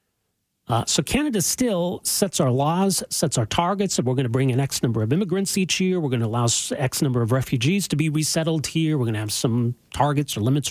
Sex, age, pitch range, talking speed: male, 40-59, 130-165 Hz, 235 wpm